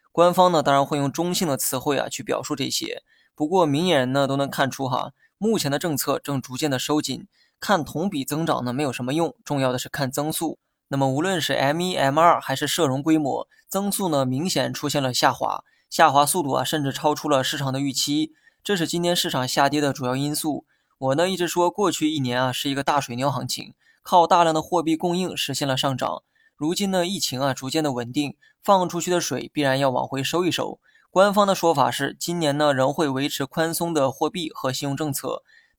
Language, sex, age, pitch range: Chinese, male, 20-39, 135-170 Hz